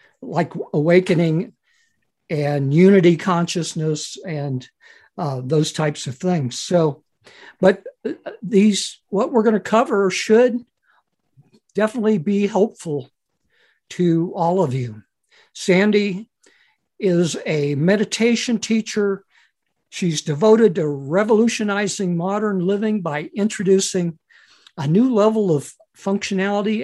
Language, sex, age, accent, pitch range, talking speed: English, male, 60-79, American, 155-210 Hz, 100 wpm